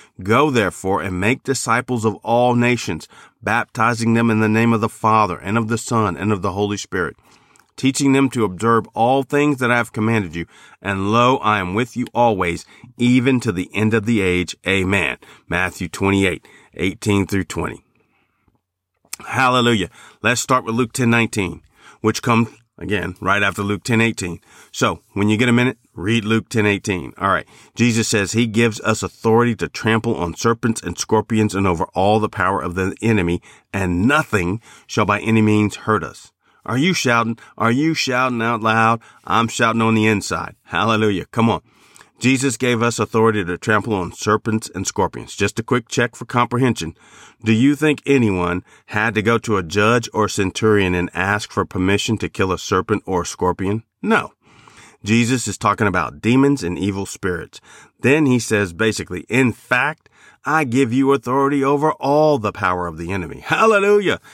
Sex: male